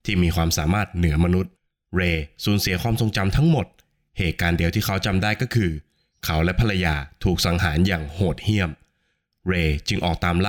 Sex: male